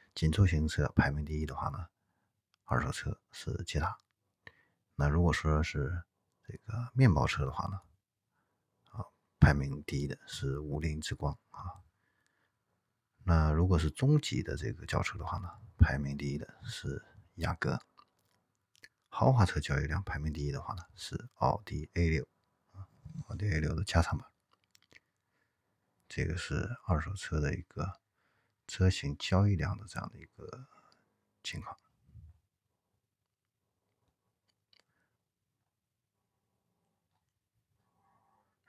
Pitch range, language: 80-110 Hz, Chinese